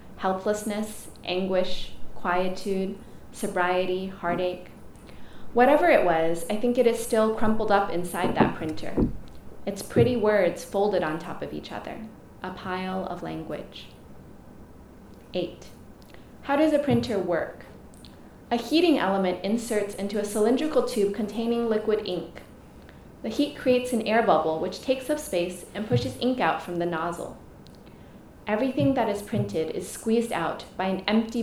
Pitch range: 180-220 Hz